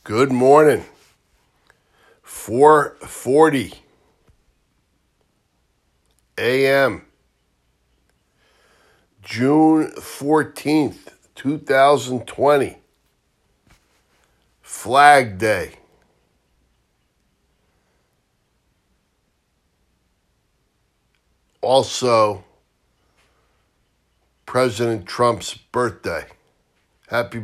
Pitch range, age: 95-135 Hz, 50-69